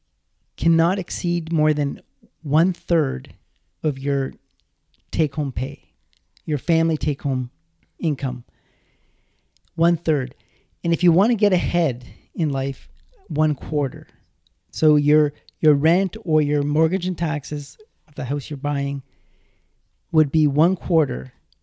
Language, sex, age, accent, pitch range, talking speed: English, male, 40-59, American, 140-165 Hz, 115 wpm